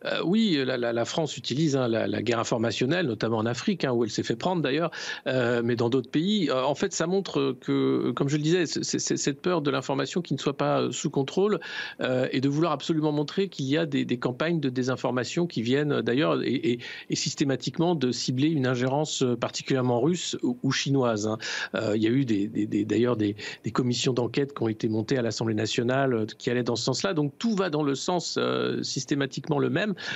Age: 50-69